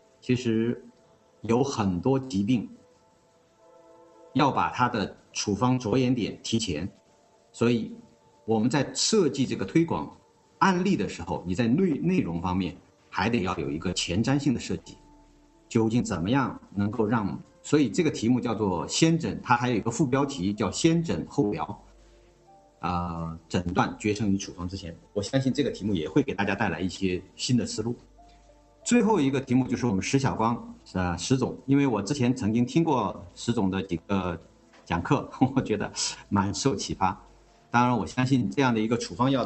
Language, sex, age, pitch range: Chinese, male, 50-69, 95-135 Hz